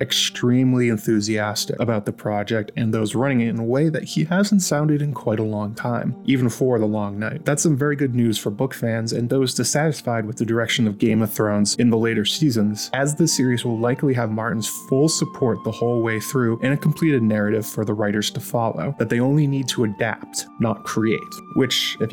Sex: male